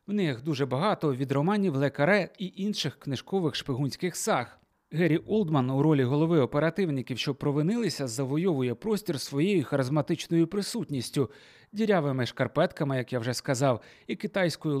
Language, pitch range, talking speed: Ukrainian, 140-185 Hz, 135 wpm